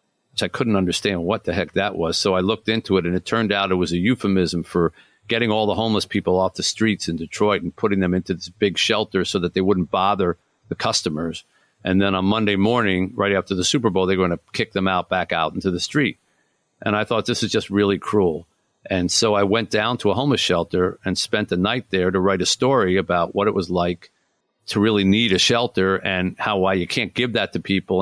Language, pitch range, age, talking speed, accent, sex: English, 95-115 Hz, 50-69, 240 wpm, American, male